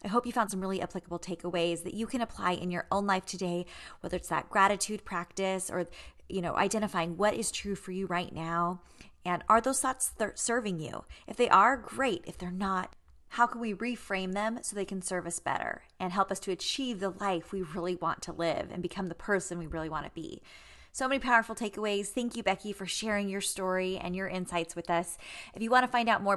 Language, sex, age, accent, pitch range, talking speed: English, female, 20-39, American, 180-225 Hz, 230 wpm